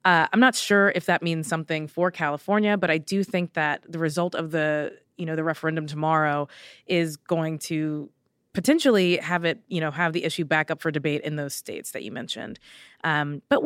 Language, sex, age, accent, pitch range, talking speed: English, female, 20-39, American, 160-200 Hz, 205 wpm